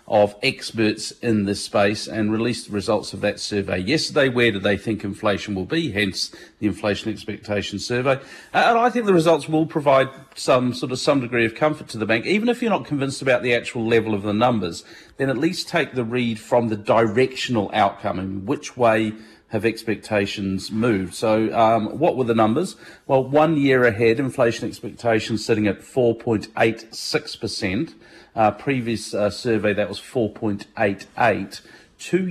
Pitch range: 105-130 Hz